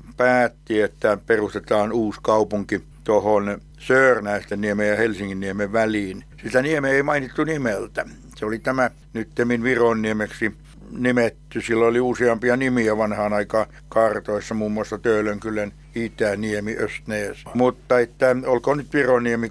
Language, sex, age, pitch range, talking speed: Finnish, male, 60-79, 105-130 Hz, 125 wpm